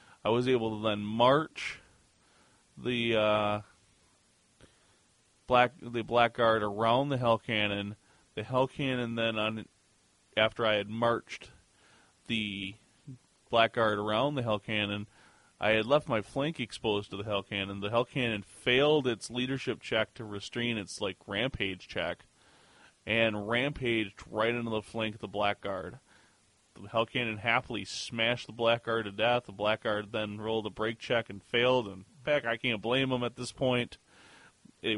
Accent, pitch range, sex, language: American, 105-125 Hz, male, English